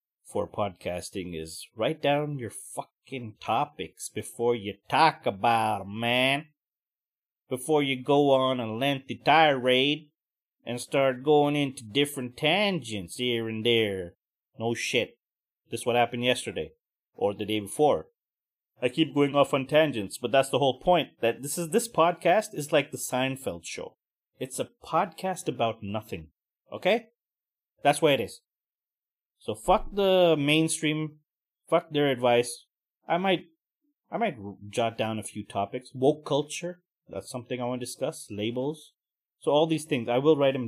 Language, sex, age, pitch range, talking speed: English, male, 30-49, 115-160 Hz, 155 wpm